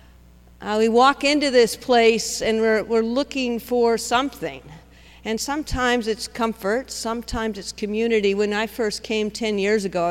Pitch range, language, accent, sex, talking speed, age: 185-230 Hz, English, American, female, 160 wpm, 50-69